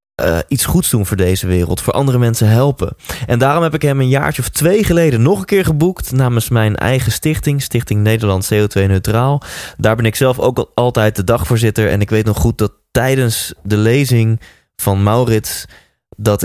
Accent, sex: Dutch, male